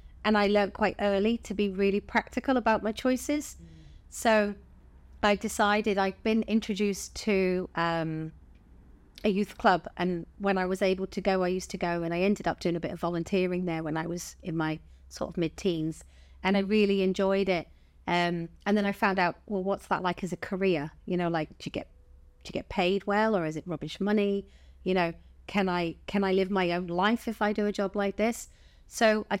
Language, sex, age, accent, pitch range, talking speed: English, female, 30-49, British, 170-205 Hz, 215 wpm